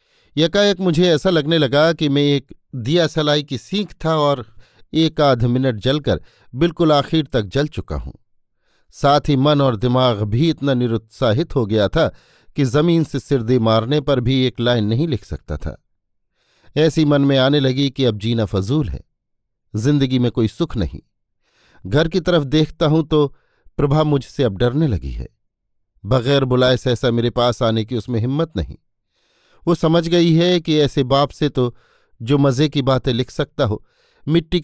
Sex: male